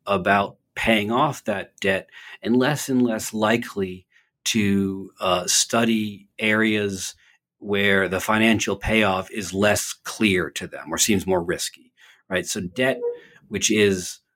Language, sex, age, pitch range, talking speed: English, male, 40-59, 95-120 Hz, 135 wpm